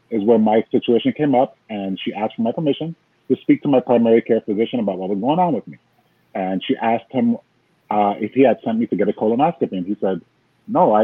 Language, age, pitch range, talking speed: English, 30-49, 100-130 Hz, 245 wpm